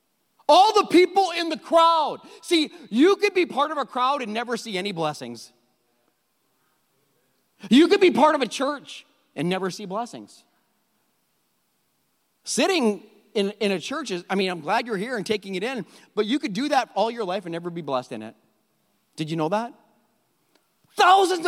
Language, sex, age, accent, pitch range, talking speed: English, male, 40-59, American, 215-345 Hz, 180 wpm